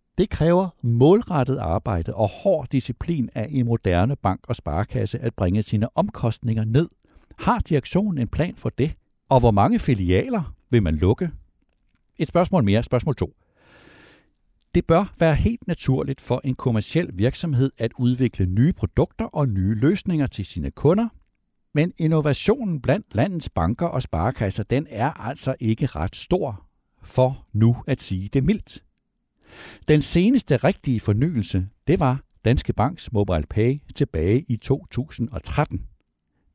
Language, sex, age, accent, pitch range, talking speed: Danish, male, 60-79, native, 100-145 Hz, 145 wpm